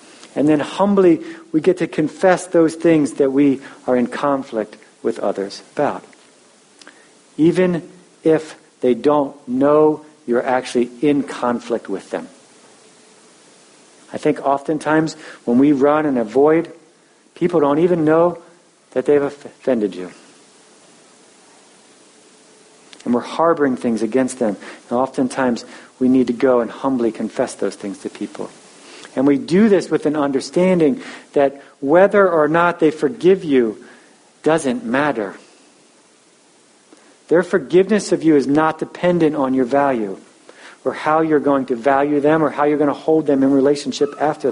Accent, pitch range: American, 135-180 Hz